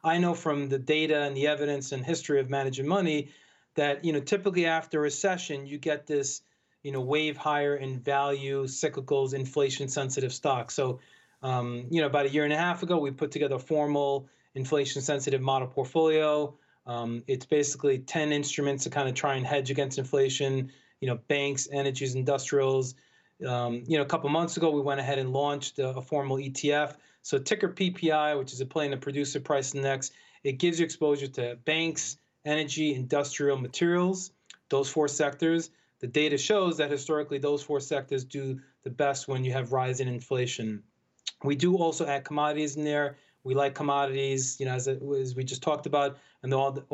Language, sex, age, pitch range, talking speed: English, male, 30-49, 135-150 Hz, 190 wpm